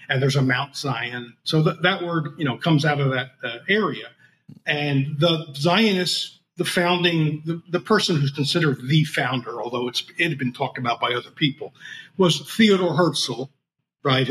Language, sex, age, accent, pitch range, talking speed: English, male, 50-69, American, 140-180 Hz, 180 wpm